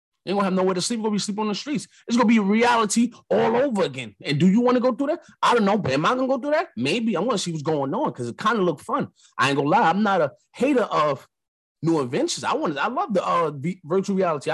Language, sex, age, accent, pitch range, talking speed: English, male, 30-49, American, 140-220 Hz, 295 wpm